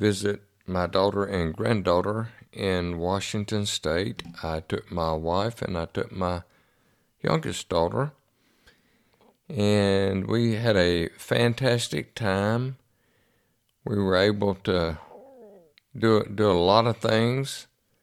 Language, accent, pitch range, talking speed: English, American, 90-105 Hz, 115 wpm